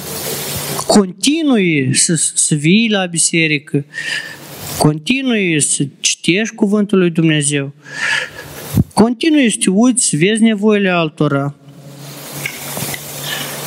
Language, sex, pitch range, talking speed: Romanian, male, 155-230 Hz, 90 wpm